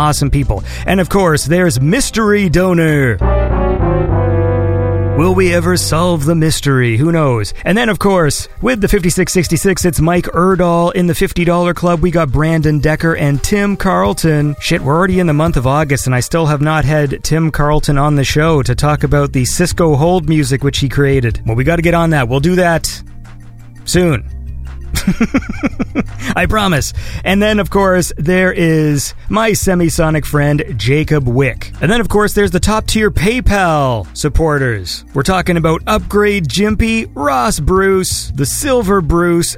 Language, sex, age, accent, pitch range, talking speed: English, male, 40-59, American, 125-180 Hz, 165 wpm